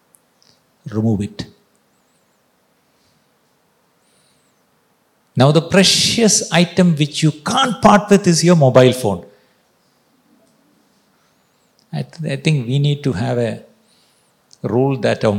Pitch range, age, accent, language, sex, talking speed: 120-175 Hz, 50-69, native, Malayalam, male, 105 wpm